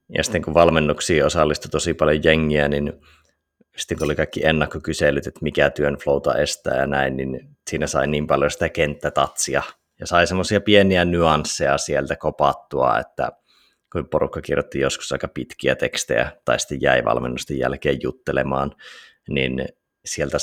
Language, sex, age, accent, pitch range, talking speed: Finnish, male, 30-49, native, 70-80 Hz, 150 wpm